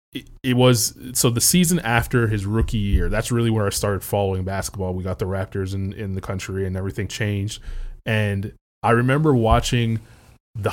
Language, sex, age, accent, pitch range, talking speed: English, male, 20-39, American, 105-135 Hz, 180 wpm